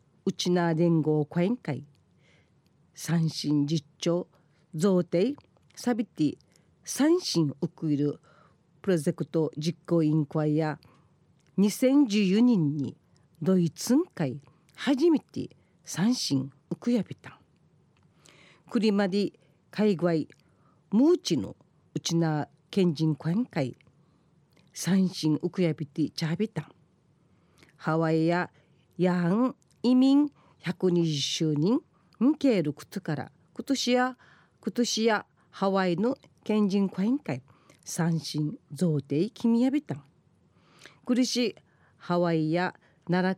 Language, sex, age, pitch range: Japanese, female, 40-59, 155-205 Hz